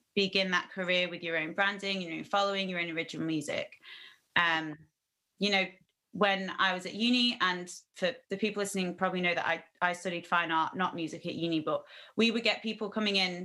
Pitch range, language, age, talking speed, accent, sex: 165-200 Hz, English, 30-49, 205 wpm, British, female